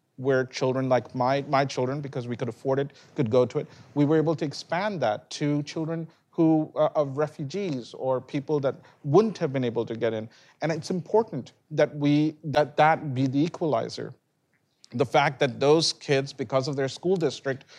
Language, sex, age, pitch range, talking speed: English, male, 40-59, 130-155 Hz, 190 wpm